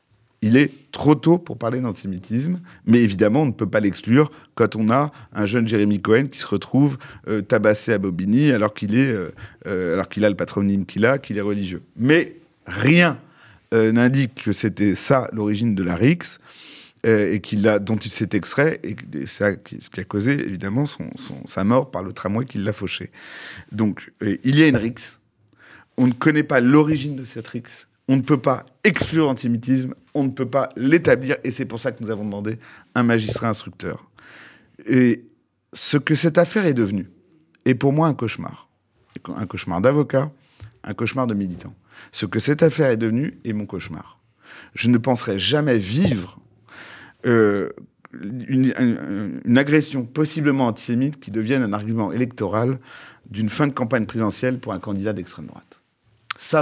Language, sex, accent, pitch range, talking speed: French, male, French, 105-135 Hz, 175 wpm